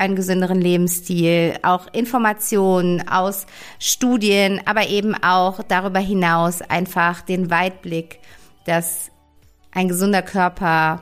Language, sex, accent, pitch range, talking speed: German, female, German, 170-195 Hz, 105 wpm